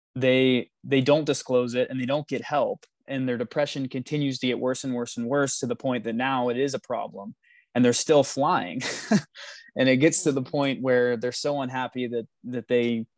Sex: male